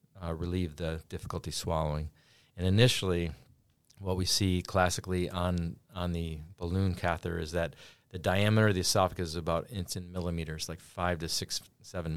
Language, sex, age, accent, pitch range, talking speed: English, male, 40-59, American, 85-100 Hz, 160 wpm